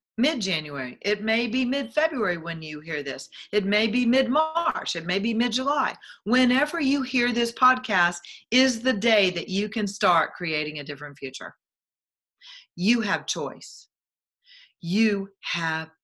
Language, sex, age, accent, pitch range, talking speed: English, female, 40-59, American, 160-235 Hz, 140 wpm